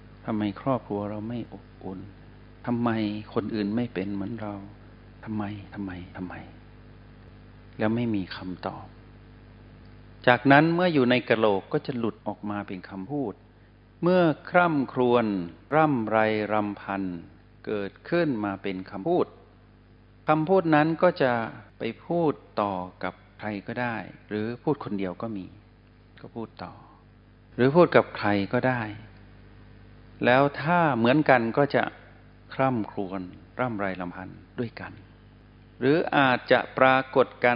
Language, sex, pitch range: Thai, male, 100-120 Hz